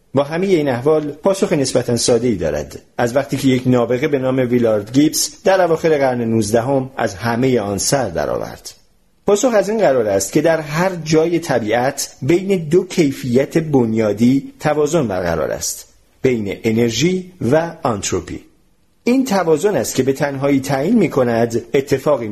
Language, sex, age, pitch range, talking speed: Persian, male, 50-69, 120-170 Hz, 160 wpm